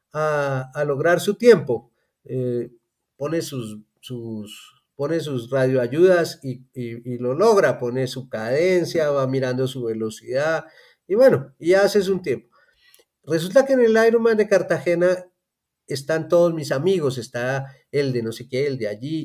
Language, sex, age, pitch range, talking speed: Spanish, male, 40-59, 140-190 Hz, 155 wpm